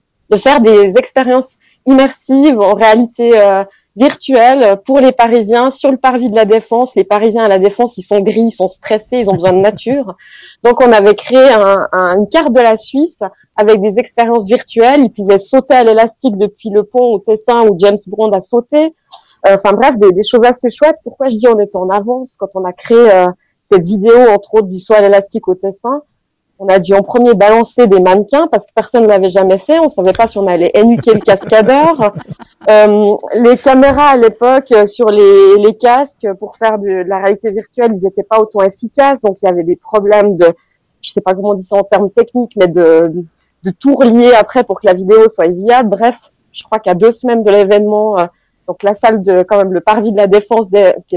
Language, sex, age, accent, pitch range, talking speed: French, female, 30-49, French, 195-245 Hz, 225 wpm